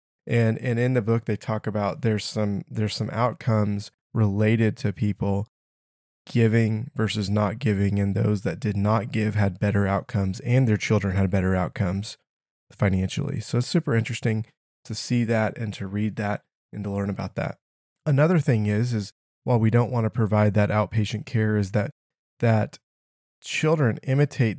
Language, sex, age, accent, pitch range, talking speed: English, male, 20-39, American, 105-125 Hz, 170 wpm